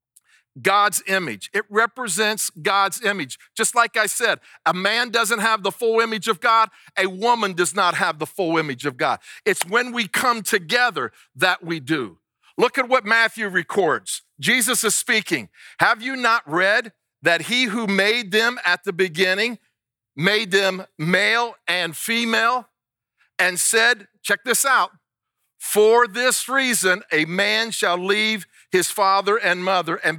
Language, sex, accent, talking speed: English, male, American, 155 wpm